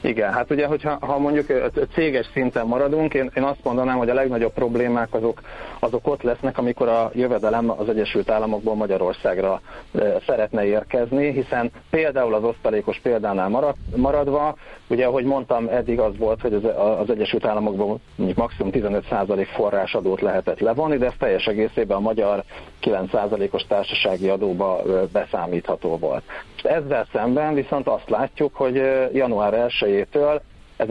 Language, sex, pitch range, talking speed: Hungarian, male, 110-135 Hz, 140 wpm